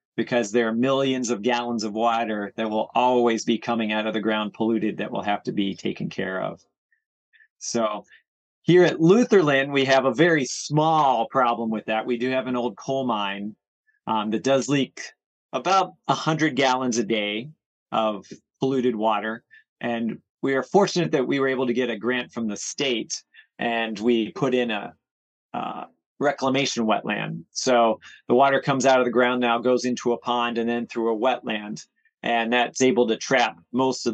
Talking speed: 185 wpm